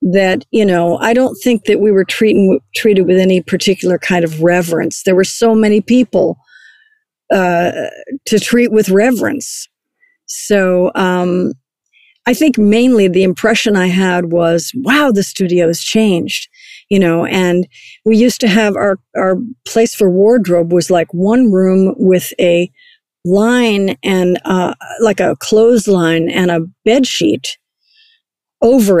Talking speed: 145 wpm